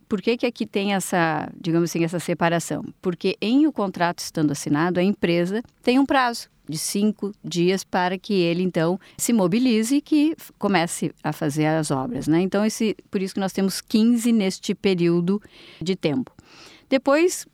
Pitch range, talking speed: 165-215 Hz, 175 wpm